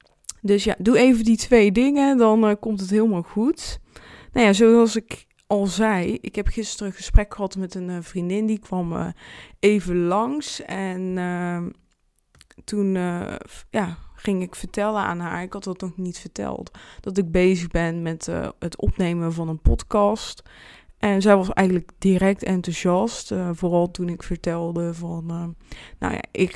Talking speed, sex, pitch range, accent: 175 wpm, female, 175-210 Hz, Dutch